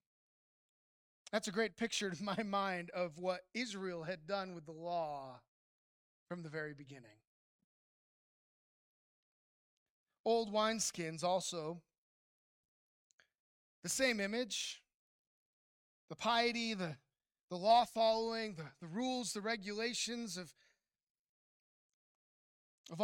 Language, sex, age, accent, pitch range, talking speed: English, male, 20-39, American, 180-230 Hz, 100 wpm